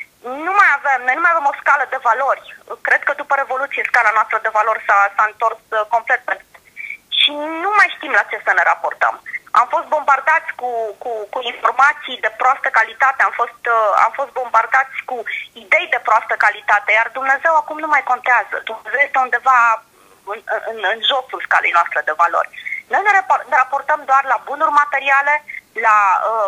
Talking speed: 185 wpm